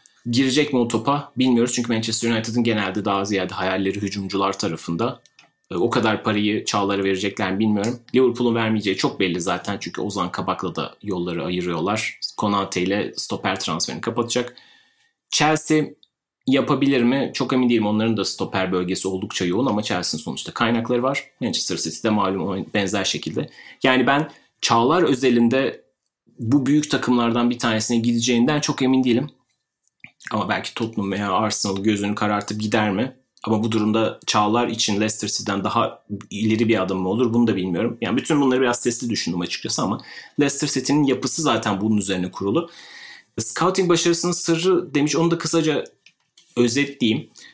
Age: 30-49